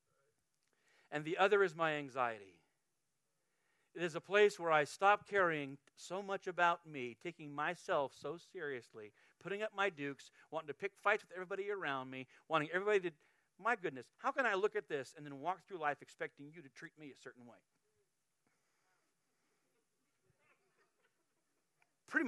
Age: 50-69